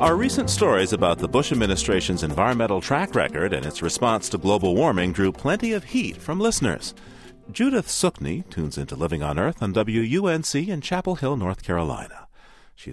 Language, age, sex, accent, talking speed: English, 40-59, male, American, 170 wpm